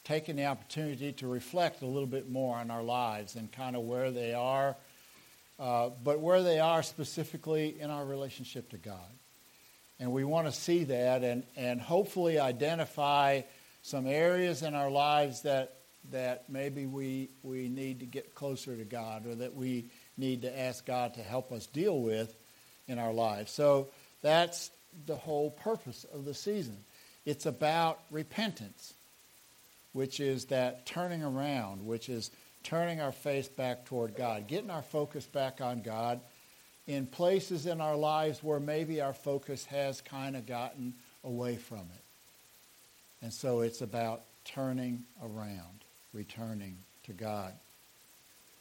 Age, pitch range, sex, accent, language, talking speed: 60-79, 120-150 Hz, male, American, English, 155 wpm